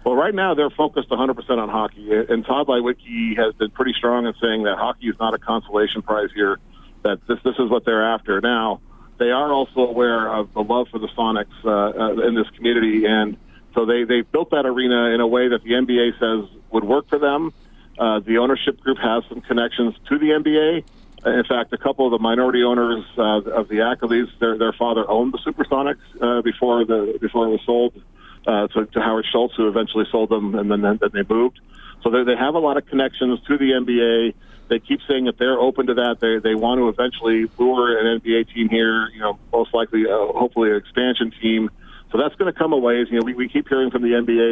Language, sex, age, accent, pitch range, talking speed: English, male, 40-59, American, 110-125 Hz, 225 wpm